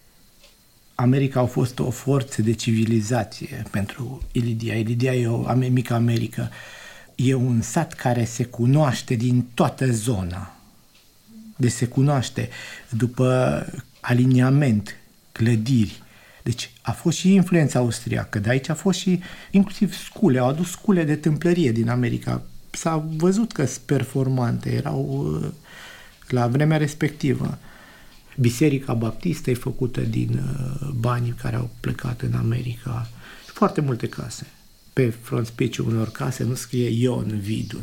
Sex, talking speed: male, 130 wpm